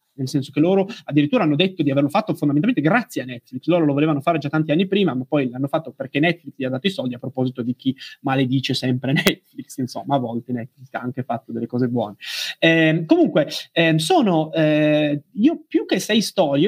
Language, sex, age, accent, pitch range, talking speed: Italian, male, 20-39, native, 135-185 Hz, 215 wpm